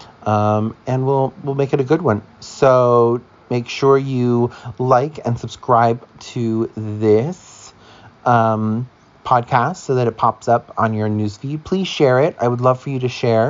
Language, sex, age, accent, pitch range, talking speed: English, male, 30-49, American, 110-130 Hz, 175 wpm